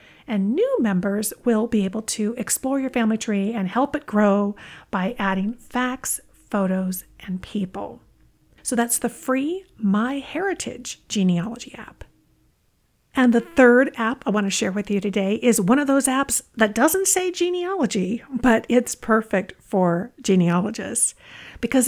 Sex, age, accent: female, 50-69, American